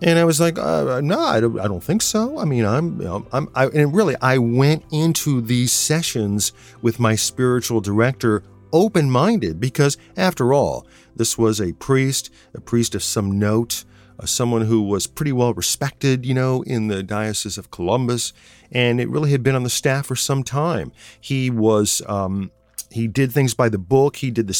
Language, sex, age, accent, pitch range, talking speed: English, male, 40-59, American, 110-150 Hz, 195 wpm